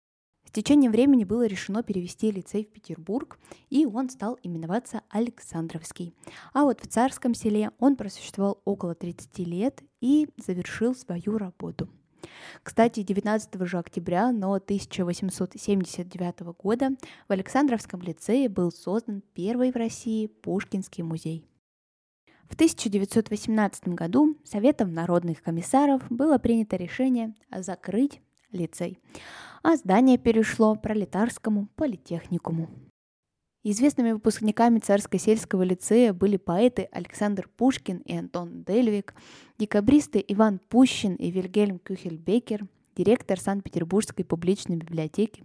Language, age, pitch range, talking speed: Russian, 10-29, 180-230 Hz, 105 wpm